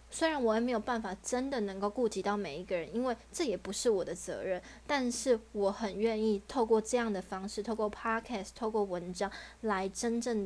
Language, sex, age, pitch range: Chinese, female, 20-39, 200-240 Hz